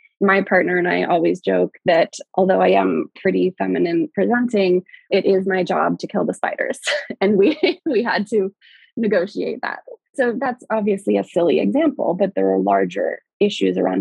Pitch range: 190-240 Hz